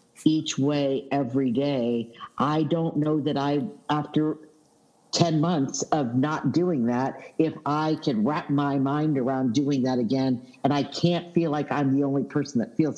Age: 50-69